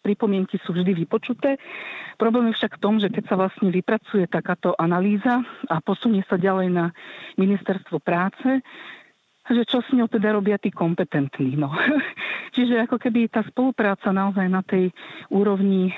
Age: 50-69